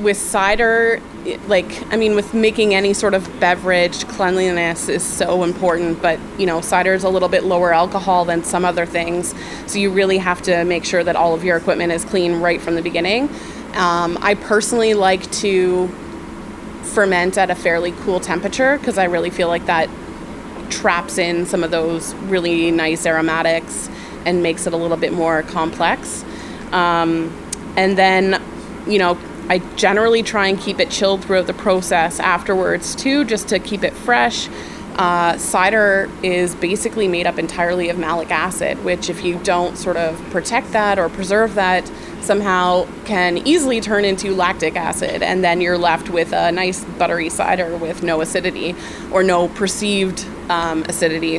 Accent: American